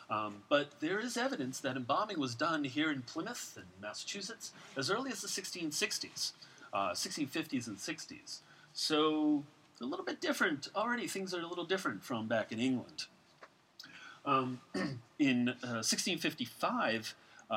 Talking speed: 140 wpm